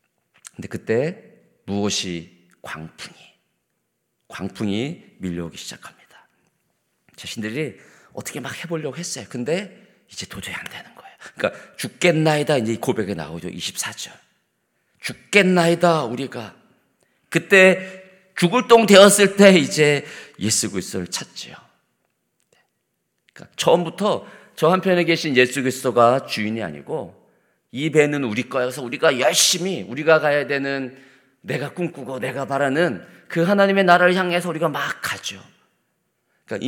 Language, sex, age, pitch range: Korean, male, 40-59, 100-165 Hz